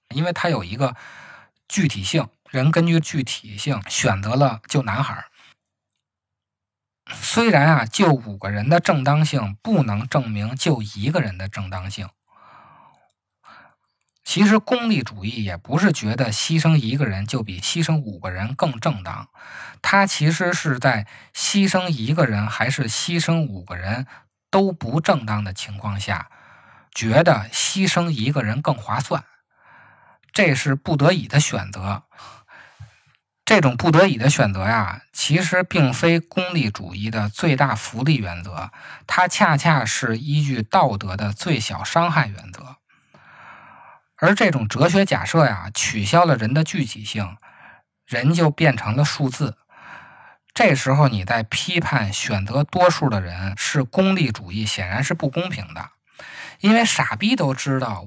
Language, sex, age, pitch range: Chinese, male, 20-39, 105-165 Hz